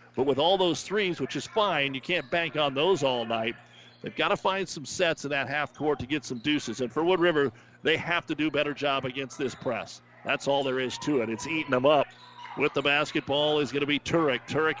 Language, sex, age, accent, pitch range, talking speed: English, male, 50-69, American, 135-160 Hz, 250 wpm